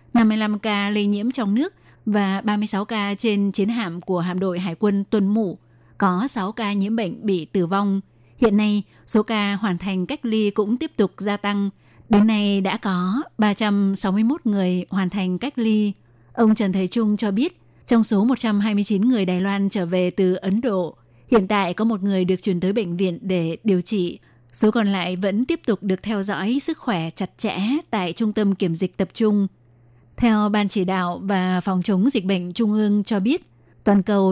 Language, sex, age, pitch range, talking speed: Vietnamese, female, 20-39, 185-220 Hz, 200 wpm